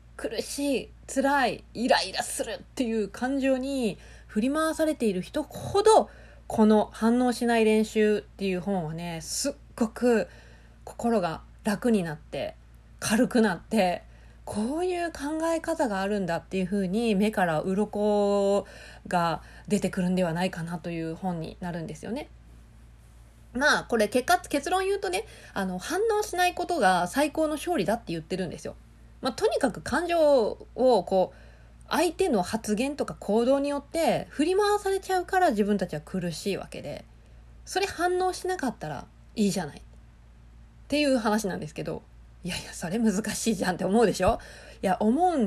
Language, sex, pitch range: Japanese, female, 185-280 Hz